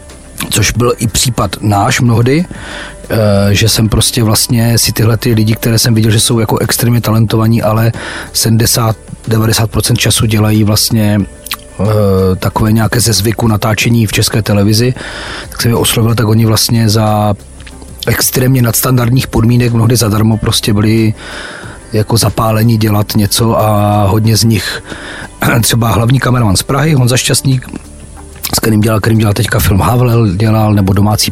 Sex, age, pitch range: male, 30-49, 105-120 Hz